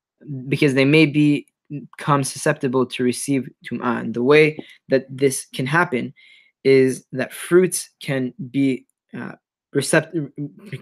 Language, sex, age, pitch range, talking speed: English, male, 20-39, 125-145 Hz, 130 wpm